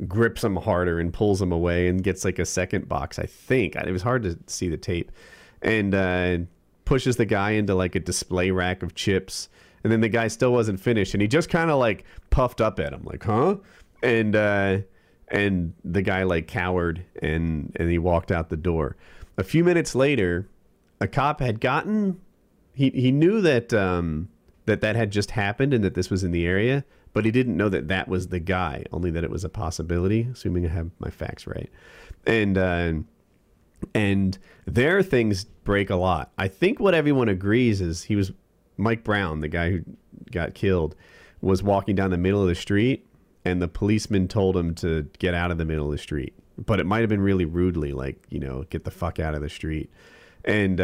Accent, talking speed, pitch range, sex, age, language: American, 210 wpm, 90-115 Hz, male, 40-59, English